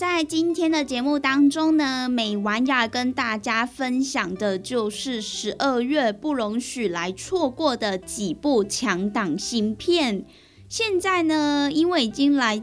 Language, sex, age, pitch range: Chinese, female, 10-29, 215-290 Hz